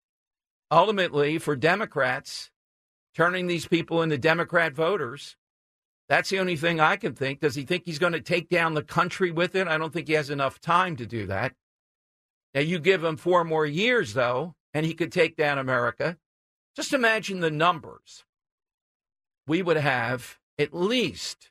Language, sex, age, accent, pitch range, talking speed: English, male, 50-69, American, 145-185 Hz, 170 wpm